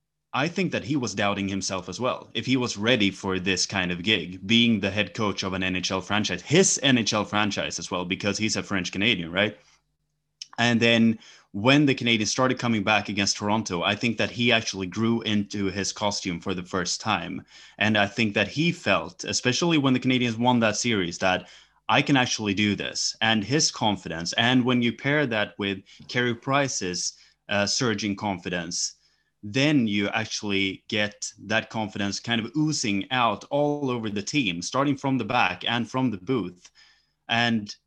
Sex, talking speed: male, 185 wpm